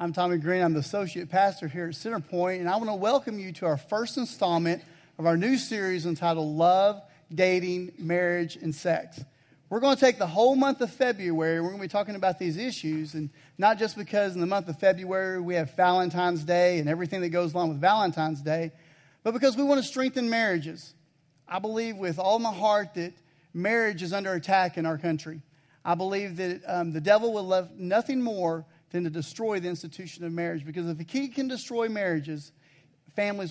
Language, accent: English, American